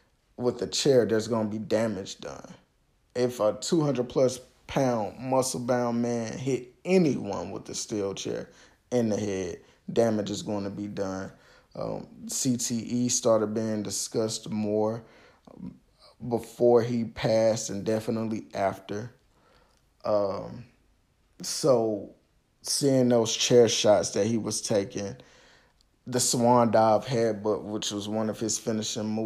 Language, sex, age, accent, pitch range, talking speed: English, male, 20-39, American, 105-120 Hz, 125 wpm